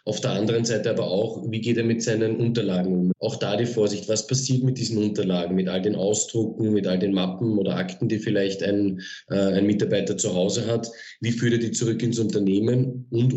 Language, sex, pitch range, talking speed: German, male, 105-125 Hz, 220 wpm